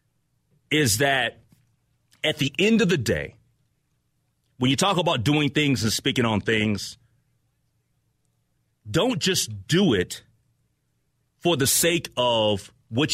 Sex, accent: male, American